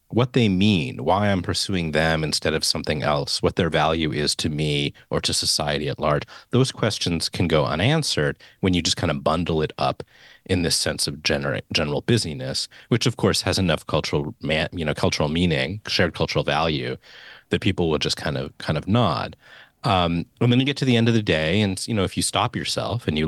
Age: 30-49